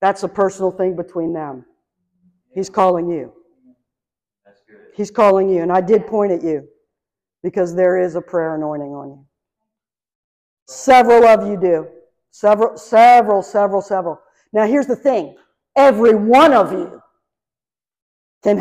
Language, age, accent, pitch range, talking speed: English, 50-69, American, 180-265 Hz, 140 wpm